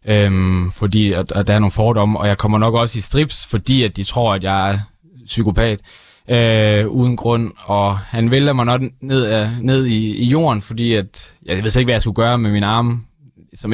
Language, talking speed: Danish, 225 wpm